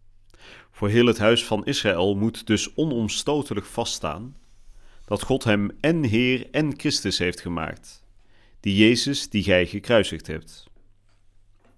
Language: Dutch